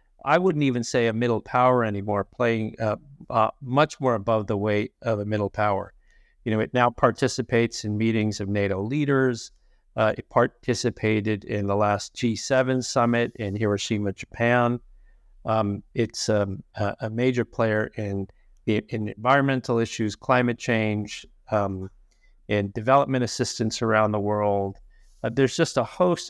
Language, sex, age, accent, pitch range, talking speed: English, male, 50-69, American, 105-125 Hz, 150 wpm